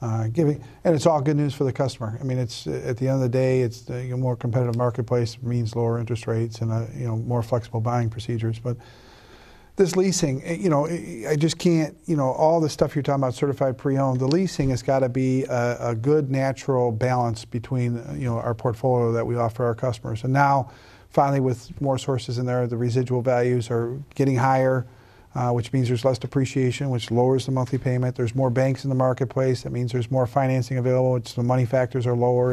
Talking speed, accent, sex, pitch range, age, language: 225 wpm, American, male, 125-140 Hz, 50-69, English